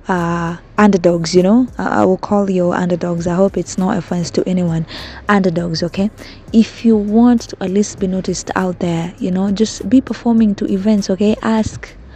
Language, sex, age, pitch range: English, female, 20-39, 180-215 Hz